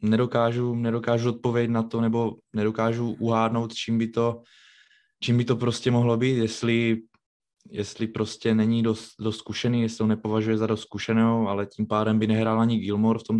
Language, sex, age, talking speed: Czech, male, 20-39, 175 wpm